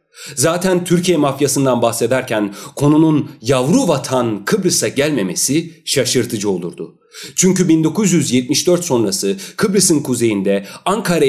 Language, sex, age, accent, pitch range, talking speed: Turkish, male, 40-59, native, 115-160 Hz, 90 wpm